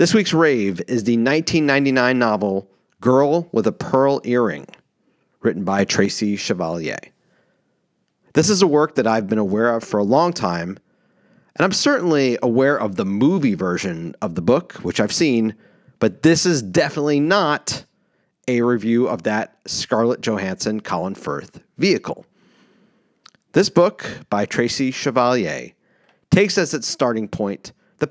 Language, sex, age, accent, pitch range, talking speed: English, male, 40-59, American, 110-160 Hz, 145 wpm